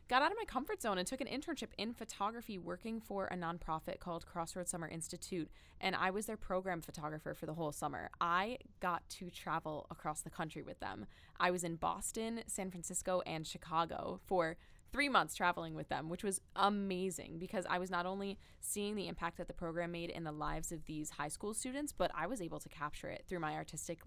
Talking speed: 215 wpm